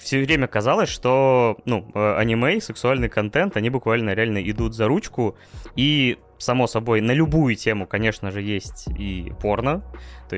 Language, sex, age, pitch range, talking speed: Russian, male, 20-39, 105-130 Hz, 150 wpm